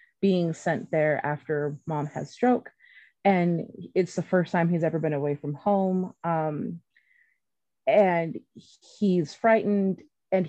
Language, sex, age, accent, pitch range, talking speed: English, female, 30-49, American, 150-180 Hz, 130 wpm